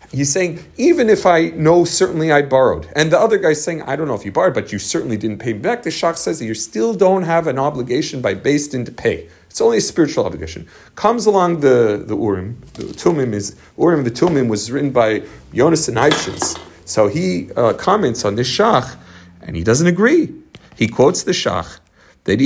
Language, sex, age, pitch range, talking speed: English, male, 40-59, 110-175 Hz, 215 wpm